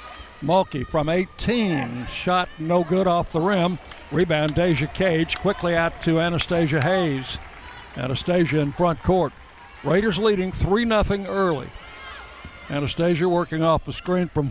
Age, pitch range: 60-79, 155-180 Hz